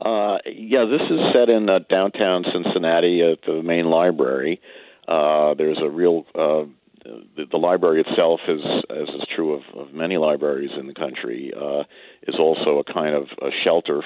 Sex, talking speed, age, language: male, 175 wpm, 50-69, English